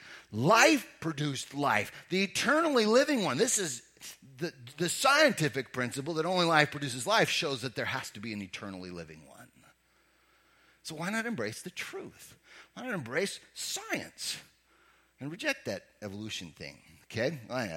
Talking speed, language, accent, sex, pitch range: 155 wpm, English, American, male, 120-175 Hz